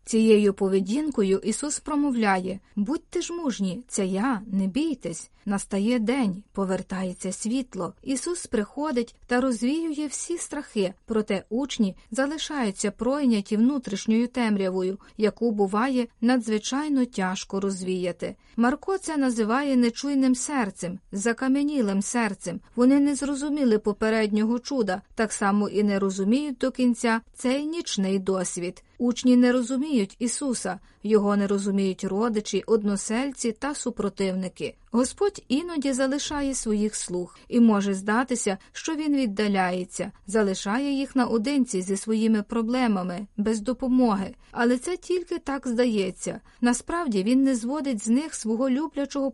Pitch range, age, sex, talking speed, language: 200-265 Hz, 30-49, female, 120 wpm, Ukrainian